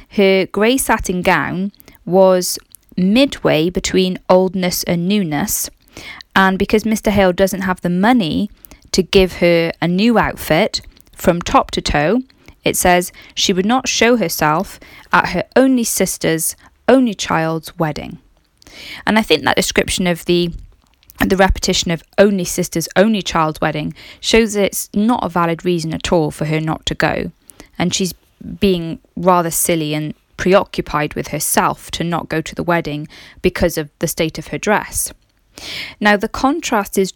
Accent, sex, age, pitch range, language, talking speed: British, female, 20-39, 170-215 Hz, English, 155 wpm